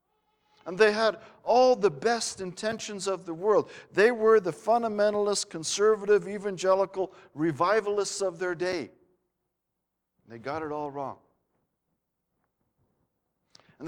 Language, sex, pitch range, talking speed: English, male, 160-215 Hz, 110 wpm